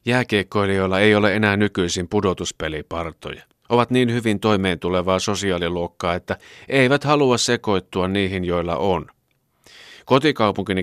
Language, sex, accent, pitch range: Finnish, male, native, 90-125 Hz